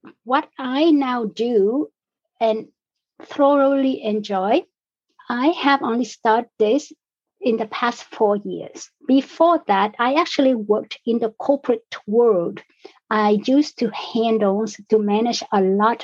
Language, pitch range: English, 210-275 Hz